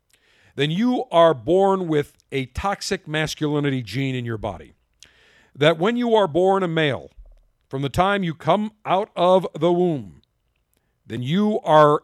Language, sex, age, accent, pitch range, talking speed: English, male, 50-69, American, 130-180 Hz, 155 wpm